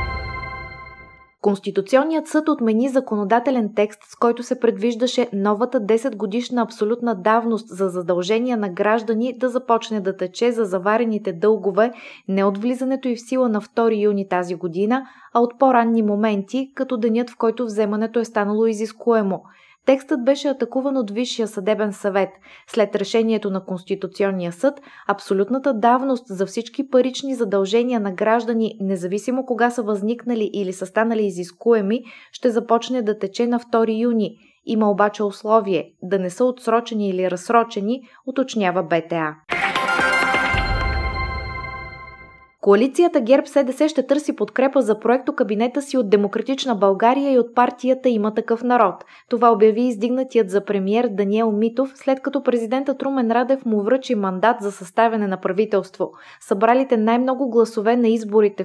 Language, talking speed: Bulgarian, 140 wpm